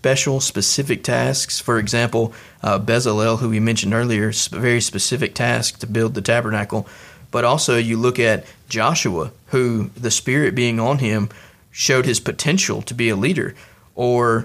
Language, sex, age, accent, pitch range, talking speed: English, male, 30-49, American, 105-125 Hz, 160 wpm